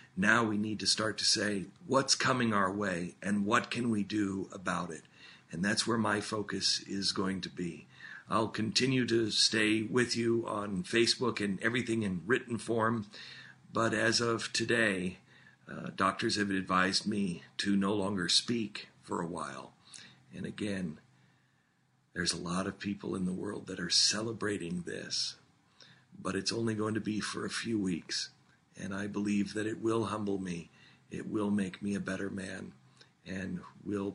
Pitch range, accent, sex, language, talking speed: 95-110 Hz, American, male, English, 170 wpm